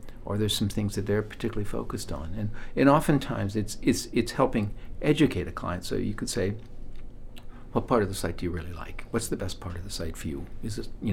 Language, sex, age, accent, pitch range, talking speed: English, male, 60-79, American, 90-120 Hz, 235 wpm